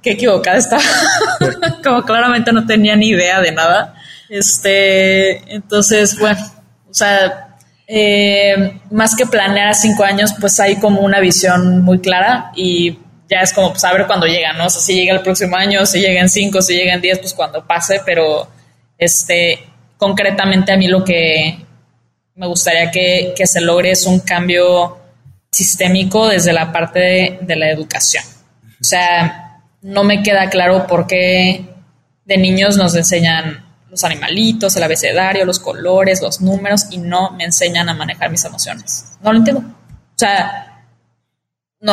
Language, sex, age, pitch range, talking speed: Spanish, female, 20-39, 175-200 Hz, 160 wpm